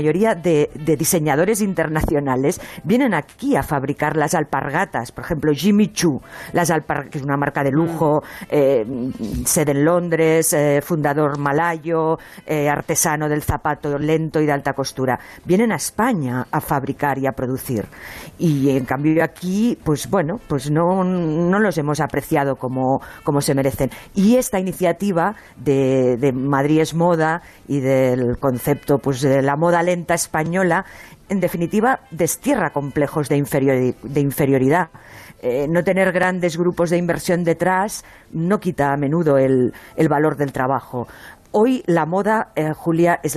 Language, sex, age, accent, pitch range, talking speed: Spanish, female, 50-69, Spanish, 140-175 Hz, 150 wpm